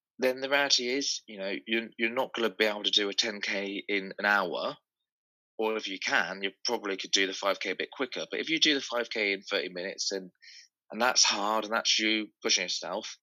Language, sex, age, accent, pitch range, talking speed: English, male, 20-39, British, 105-130 Hz, 235 wpm